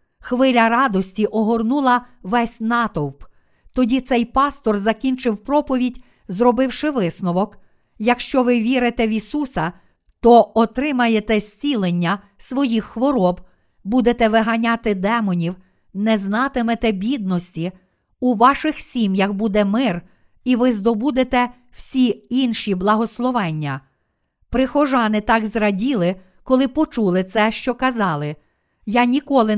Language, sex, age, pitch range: Ukrainian, female, 50-69, 200-250 Hz